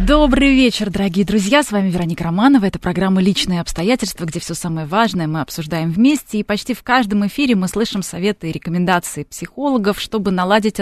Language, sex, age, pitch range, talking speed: Russian, female, 20-39, 165-210 Hz, 175 wpm